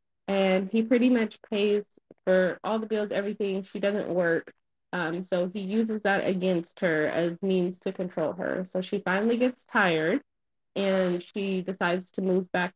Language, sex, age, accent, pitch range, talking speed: English, female, 20-39, American, 180-215 Hz, 170 wpm